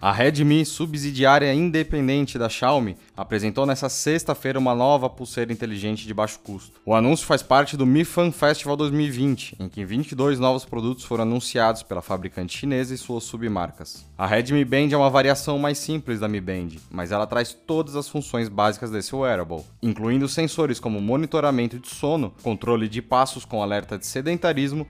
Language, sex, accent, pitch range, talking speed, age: Portuguese, male, Brazilian, 110-140 Hz, 170 wpm, 20-39